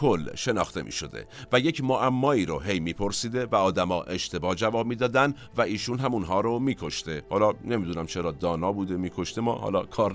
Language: Persian